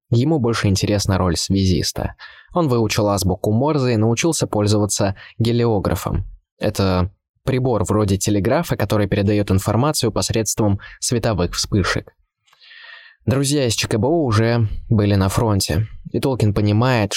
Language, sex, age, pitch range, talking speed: Russian, male, 20-39, 95-115 Hz, 115 wpm